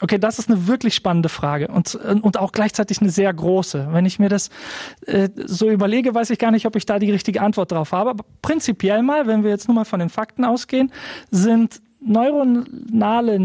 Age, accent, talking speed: 40-59, German, 210 wpm